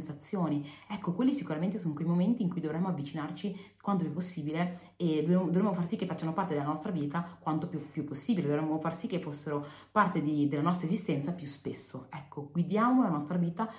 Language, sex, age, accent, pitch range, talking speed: Italian, female, 30-49, native, 150-195 Hz, 195 wpm